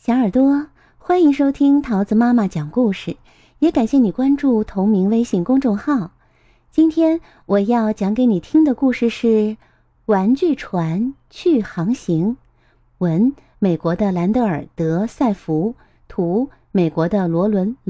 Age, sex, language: 30-49, female, Chinese